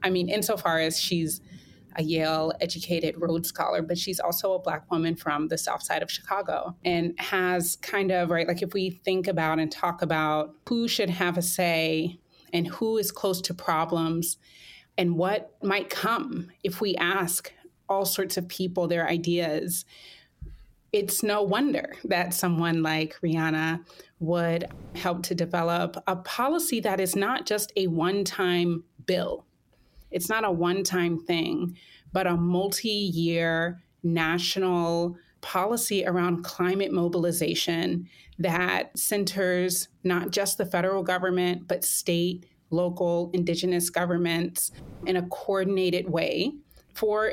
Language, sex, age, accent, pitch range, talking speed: English, female, 30-49, American, 170-195 Hz, 135 wpm